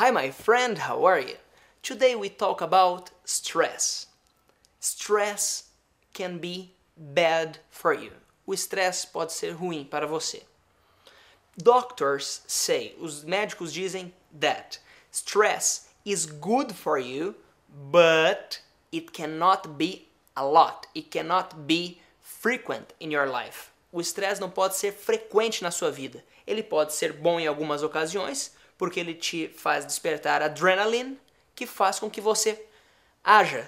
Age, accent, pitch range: 20-39, Brazilian, 170-235 Hz